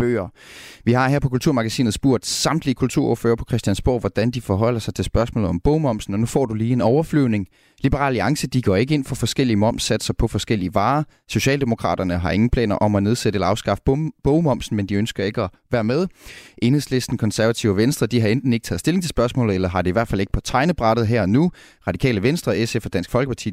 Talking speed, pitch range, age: 215 wpm, 100-130 Hz, 30-49